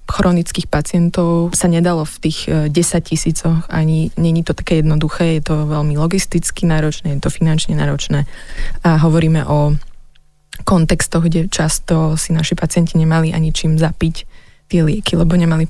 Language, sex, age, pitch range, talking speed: Slovak, female, 20-39, 155-170 Hz, 150 wpm